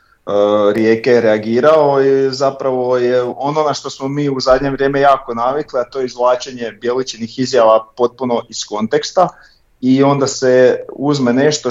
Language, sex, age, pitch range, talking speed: Croatian, male, 40-59, 115-140 Hz, 150 wpm